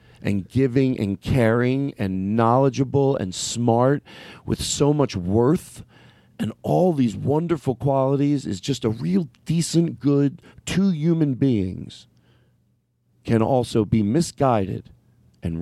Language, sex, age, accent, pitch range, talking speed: English, male, 40-59, American, 105-140 Hz, 120 wpm